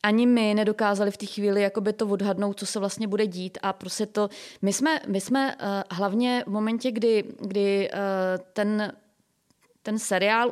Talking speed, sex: 175 wpm, female